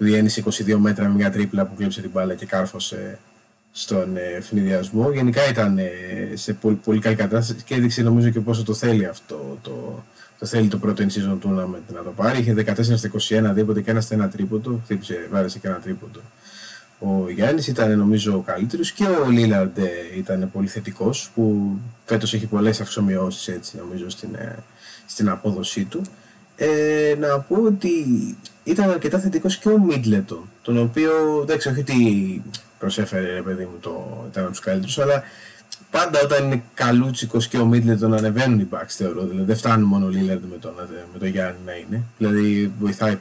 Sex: male